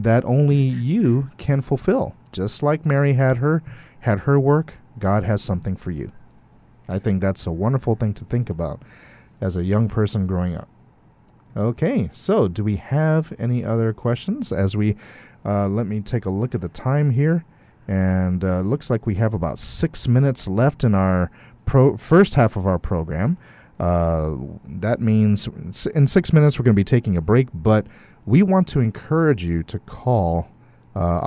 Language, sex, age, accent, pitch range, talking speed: English, male, 30-49, American, 95-140 Hz, 180 wpm